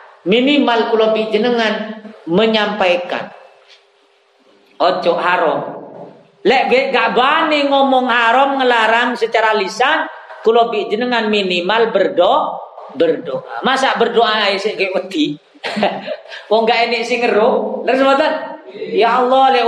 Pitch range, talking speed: 220-275 Hz, 90 wpm